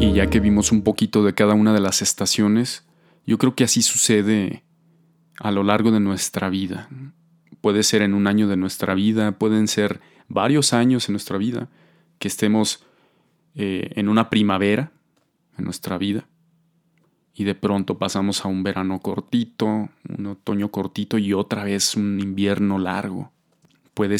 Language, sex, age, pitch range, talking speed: Spanish, male, 30-49, 100-110 Hz, 160 wpm